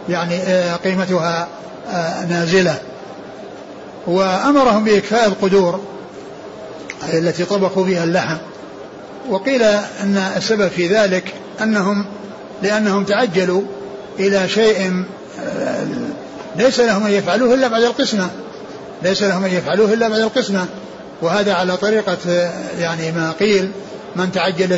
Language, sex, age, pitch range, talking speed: Arabic, male, 60-79, 180-210 Hz, 100 wpm